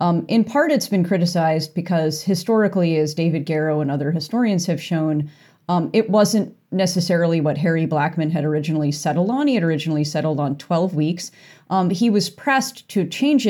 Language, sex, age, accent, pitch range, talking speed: English, female, 30-49, American, 150-185 Hz, 180 wpm